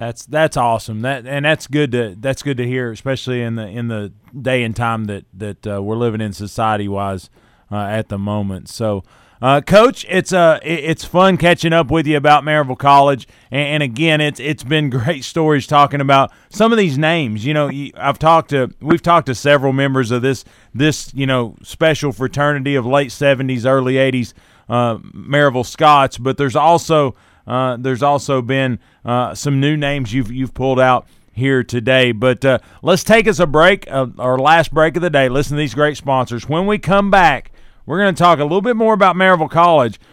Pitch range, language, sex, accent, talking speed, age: 125-160 Hz, English, male, American, 205 wpm, 30-49